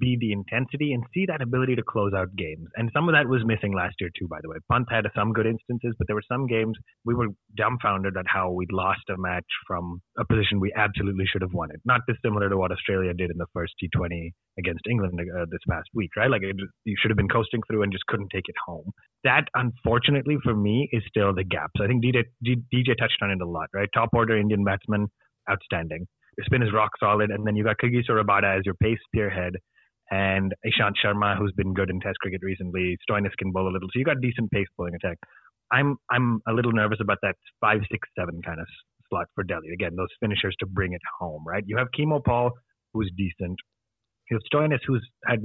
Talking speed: 235 wpm